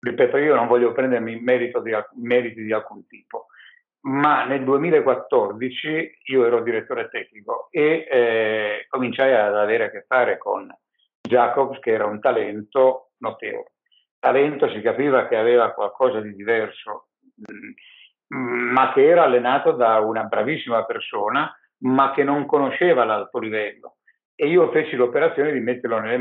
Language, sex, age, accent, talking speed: Italian, male, 60-79, native, 135 wpm